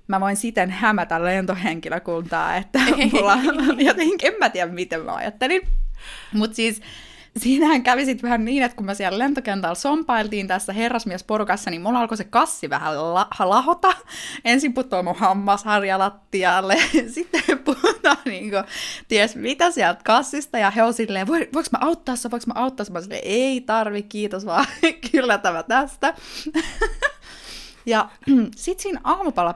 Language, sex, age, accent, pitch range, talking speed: Finnish, female, 20-39, native, 190-270 Hz, 140 wpm